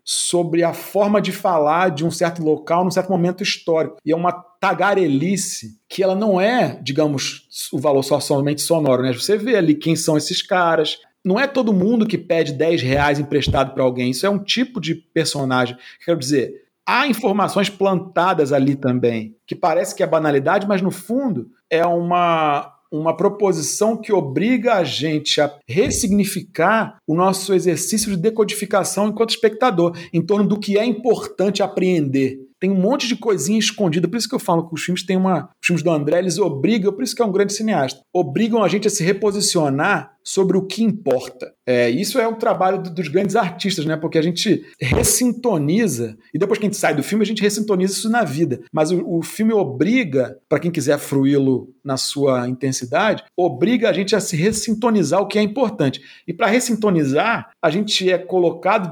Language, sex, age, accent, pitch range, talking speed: Portuguese, male, 50-69, Brazilian, 155-210 Hz, 190 wpm